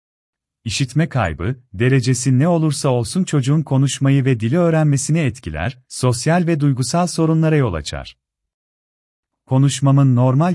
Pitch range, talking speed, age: 115-155 Hz, 115 wpm, 40-59